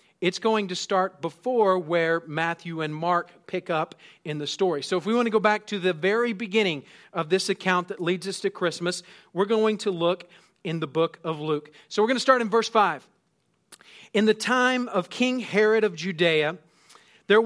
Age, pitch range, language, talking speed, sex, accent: 40-59, 170-215 Hz, English, 205 wpm, male, American